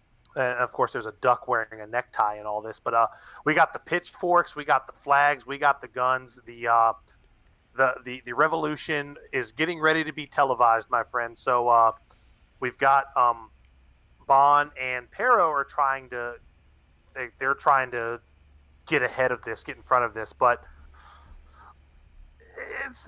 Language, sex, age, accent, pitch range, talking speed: English, male, 30-49, American, 110-140 Hz, 170 wpm